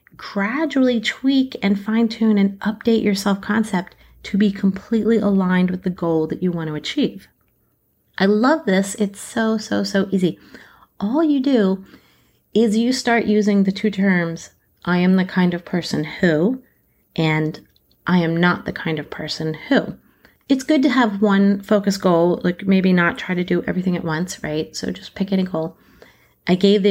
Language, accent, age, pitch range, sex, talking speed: English, American, 30-49, 165-205 Hz, female, 175 wpm